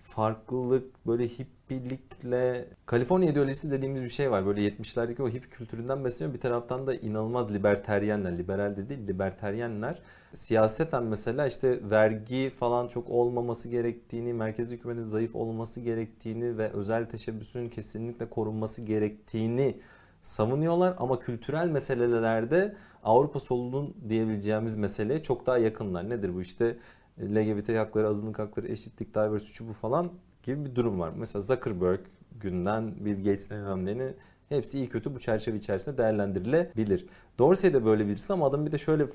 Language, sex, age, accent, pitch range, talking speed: Turkish, male, 40-59, native, 110-125 Hz, 140 wpm